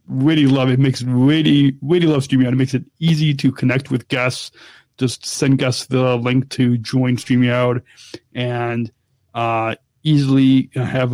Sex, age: male, 30-49